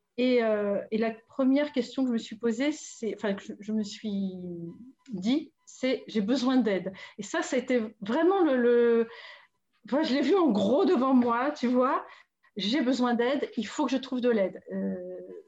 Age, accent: 40-59, French